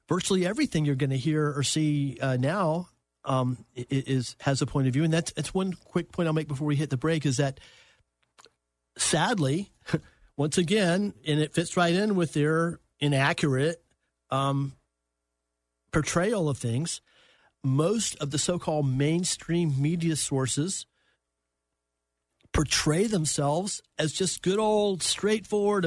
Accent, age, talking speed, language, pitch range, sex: American, 50-69, 140 wpm, English, 135-180 Hz, male